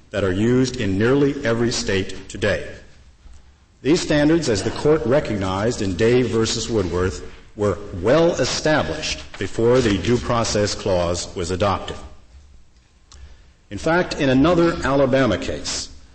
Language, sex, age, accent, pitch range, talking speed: English, male, 50-69, American, 95-125 Hz, 125 wpm